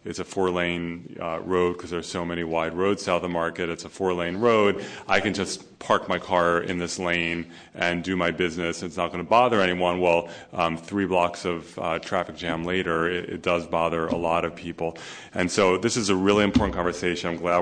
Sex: male